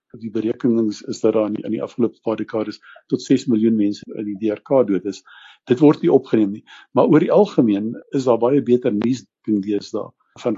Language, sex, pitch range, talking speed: English, male, 105-125 Hz, 200 wpm